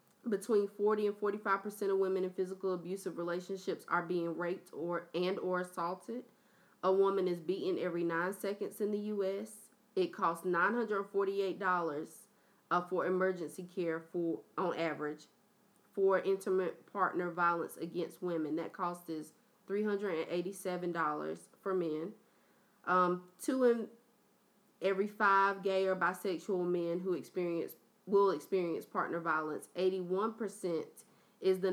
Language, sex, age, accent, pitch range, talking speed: English, female, 20-39, American, 175-205 Hz, 130 wpm